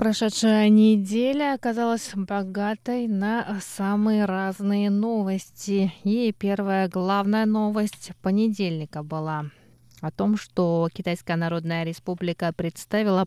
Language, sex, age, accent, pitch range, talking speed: Russian, female, 20-39, native, 180-220 Hz, 95 wpm